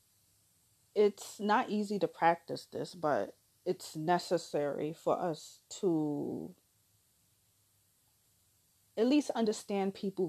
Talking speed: 95 wpm